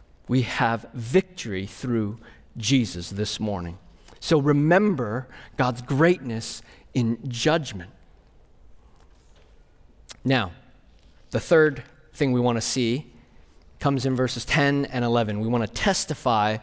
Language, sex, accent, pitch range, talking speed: English, male, American, 125-200 Hz, 105 wpm